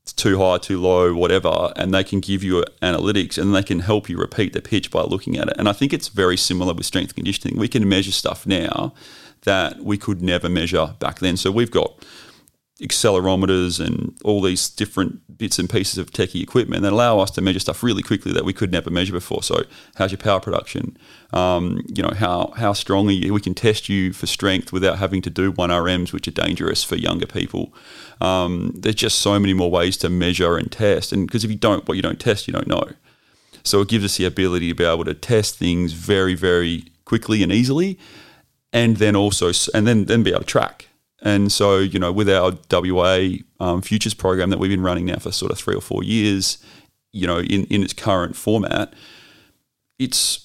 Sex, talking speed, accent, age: male, 215 wpm, Australian, 30-49